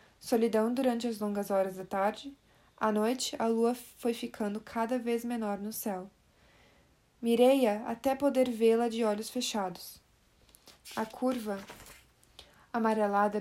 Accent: Brazilian